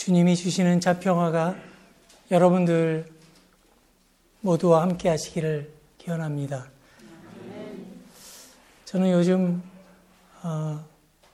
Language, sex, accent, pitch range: Korean, male, native, 155-180 Hz